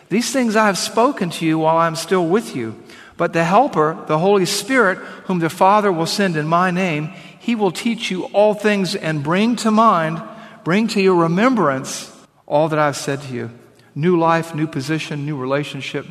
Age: 50-69